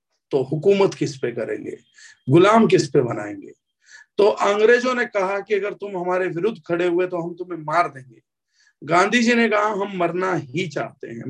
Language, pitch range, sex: Hindi, 165-210 Hz, male